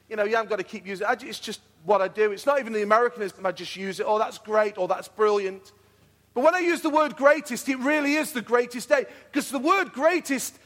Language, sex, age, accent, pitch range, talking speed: English, male, 40-59, British, 230-310 Hz, 270 wpm